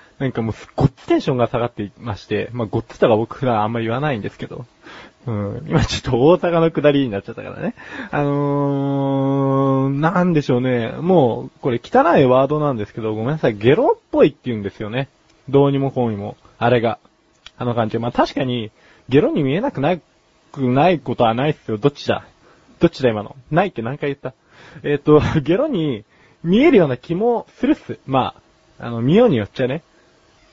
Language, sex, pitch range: Japanese, male, 115-155 Hz